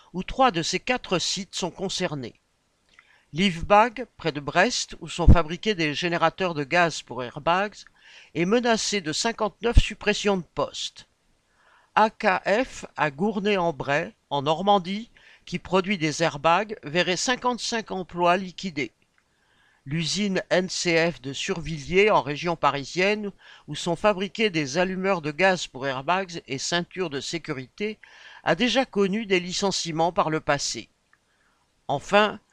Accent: French